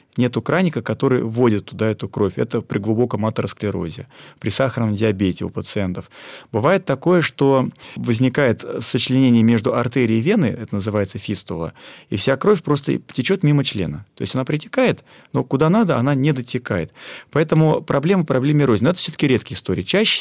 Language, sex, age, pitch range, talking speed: Russian, male, 30-49, 110-150 Hz, 160 wpm